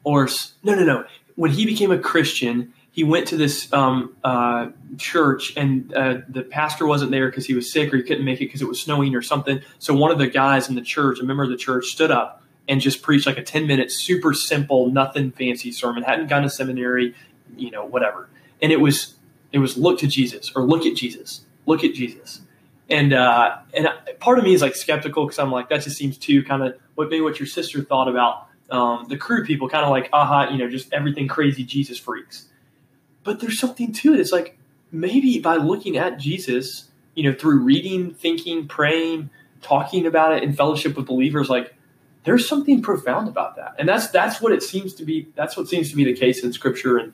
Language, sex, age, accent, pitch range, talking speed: English, male, 20-39, American, 130-160 Hz, 225 wpm